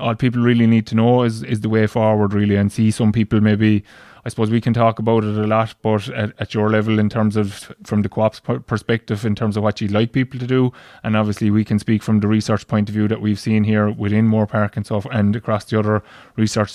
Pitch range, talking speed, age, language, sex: 105-110 Hz, 265 wpm, 20-39, English, male